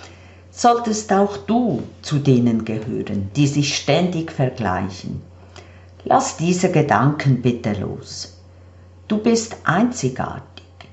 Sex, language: female, German